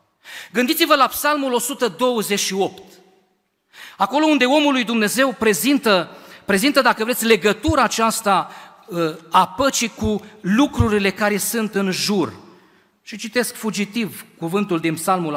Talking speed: 110 wpm